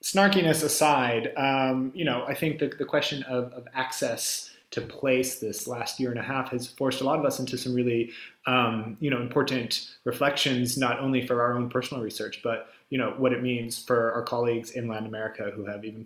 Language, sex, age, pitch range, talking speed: English, male, 20-39, 115-135 Hz, 215 wpm